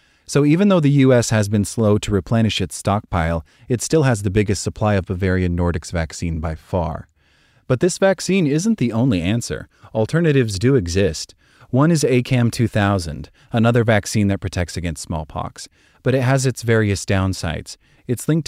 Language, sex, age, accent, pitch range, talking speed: English, male, 30-49, American, 90-120 Hz, 165 wpm